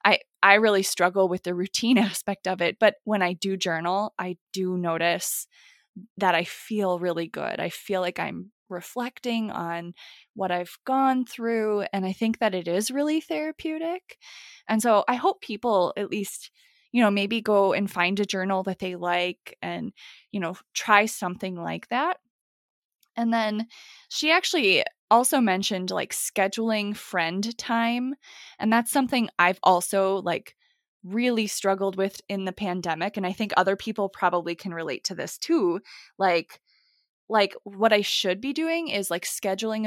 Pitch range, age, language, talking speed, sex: 185-235 Hz, 20-39, English, 165 wpm, female